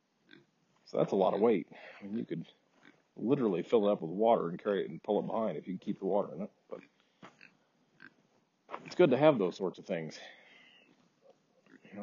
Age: 40-59